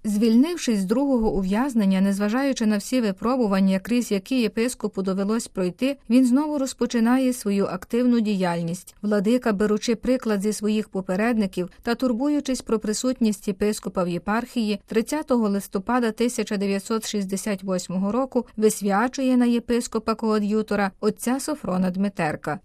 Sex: female